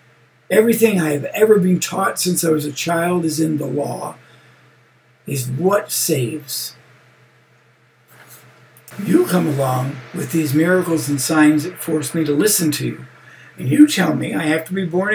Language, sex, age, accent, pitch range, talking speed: English, male, 60-79, American, 140-180 Hz, 165 wpm